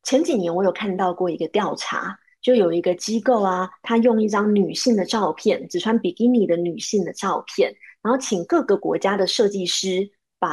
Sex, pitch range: female, 185-245 Hz